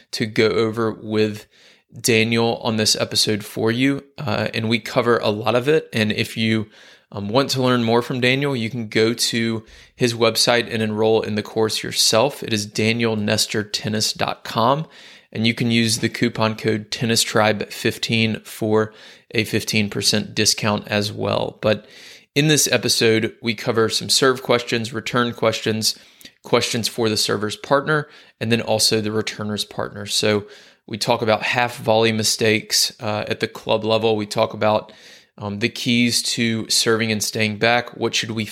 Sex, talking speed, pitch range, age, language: male, 165 wpm, 110-120 Hz, 20-39, English